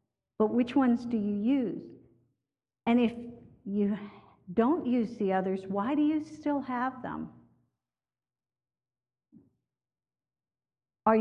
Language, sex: English, female